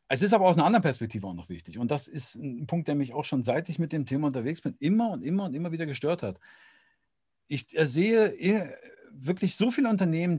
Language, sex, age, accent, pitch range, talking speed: German, male, 50-69, German, 135-190 Hz, 230 wpm